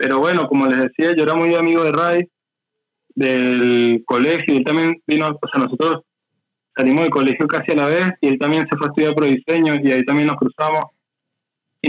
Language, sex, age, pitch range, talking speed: Spanish, male, 20-39, 135-165 Hz, 210 wpm